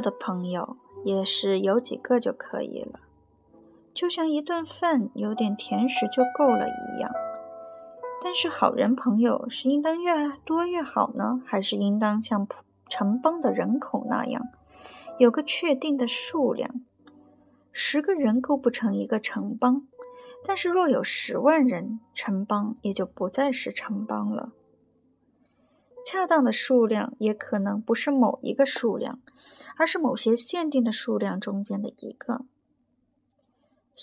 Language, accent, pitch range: Chinese, native, 215-290 Hz